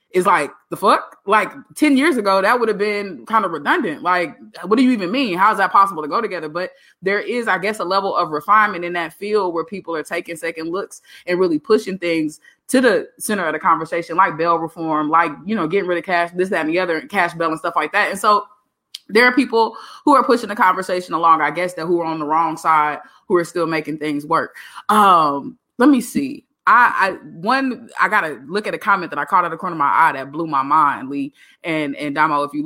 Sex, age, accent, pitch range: female, 20-39, American, 165-215 Hz